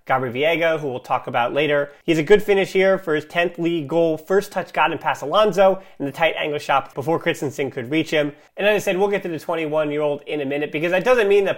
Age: 30-49